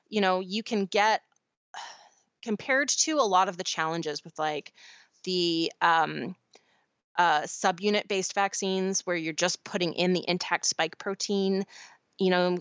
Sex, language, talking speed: female, English, 145 wpm